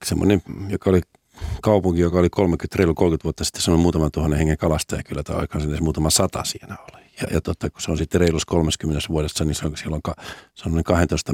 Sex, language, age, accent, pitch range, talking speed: male, Finnish, 50-69, native, 80-95 Hz, 215 wpm